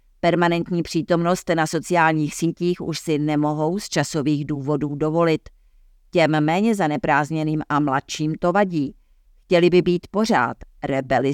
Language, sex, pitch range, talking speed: Czech, female, 145-175 Hz, 125 wpm